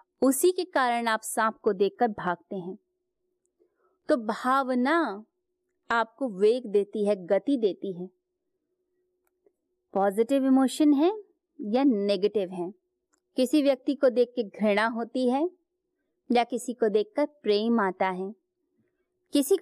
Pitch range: 220-355 Hz